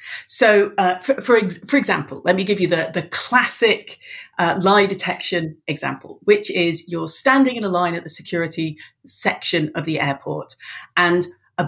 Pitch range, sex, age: 175-265 Hz, female, 40-59